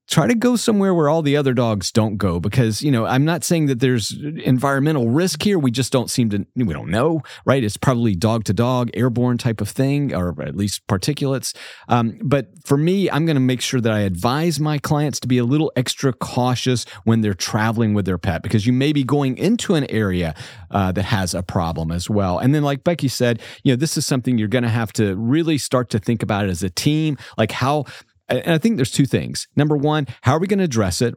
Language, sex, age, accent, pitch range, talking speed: English, male, 30-49, American, 110-145 Hz, 240 wpm